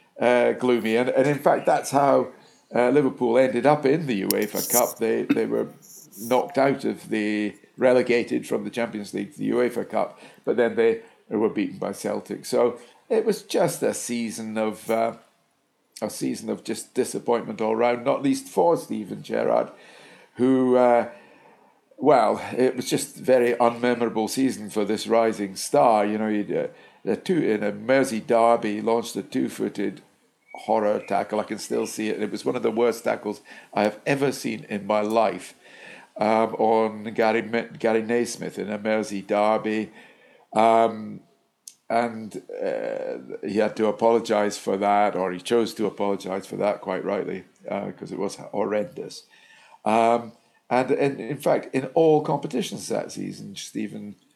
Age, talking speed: 50-69, 165 wpm